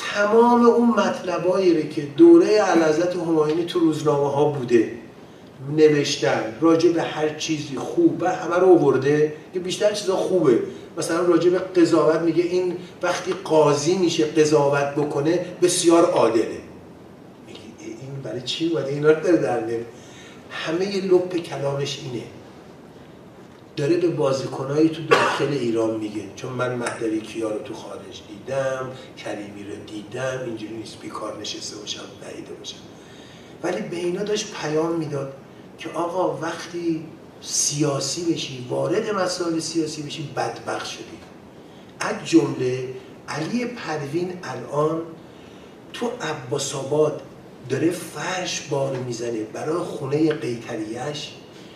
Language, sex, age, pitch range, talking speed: Persian, male, 40-59, 135-175 Hz, 120 wpm